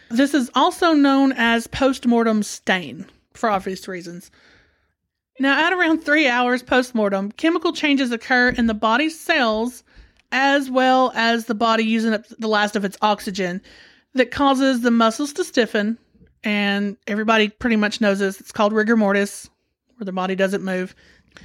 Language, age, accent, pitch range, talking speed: English, 30-49, American, 210-260 Hz, 155 wpm